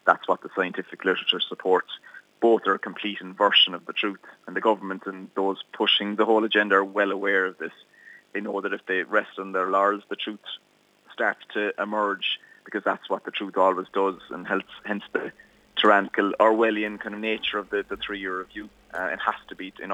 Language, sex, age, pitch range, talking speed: English, male, 30-49, 100-110 Hz, 210 wpm